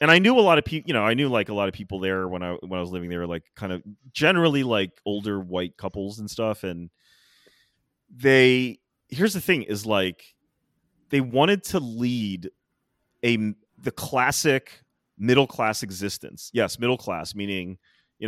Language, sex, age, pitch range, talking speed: English, male, 30-49, 95-125 Hz, 175 wpm